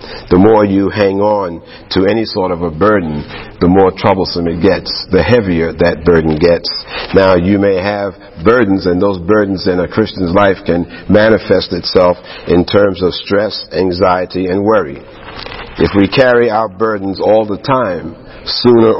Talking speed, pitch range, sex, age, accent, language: 165 wpm, 90-105 Hz, male, 50-69, American, English